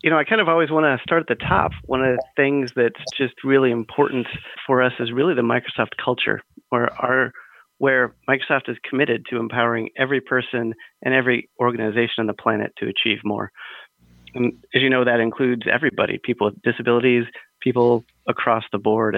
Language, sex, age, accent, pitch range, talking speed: English, male, 30-49, American, 115-125 Hz, 190 wpm